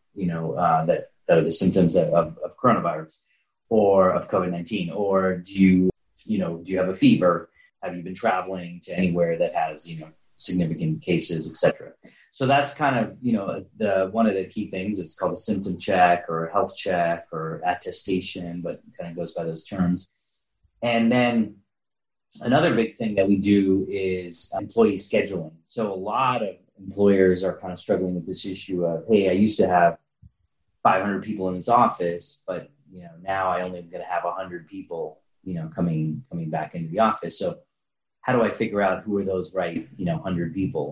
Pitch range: 90-105 Hz